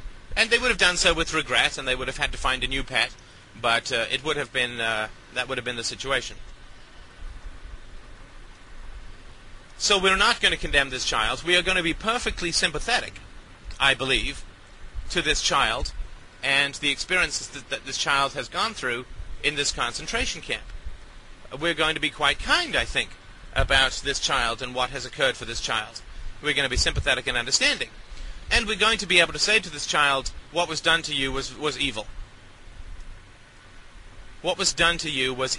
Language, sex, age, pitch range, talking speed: English, male, 30-49, 110-165 Hz, 195 wpm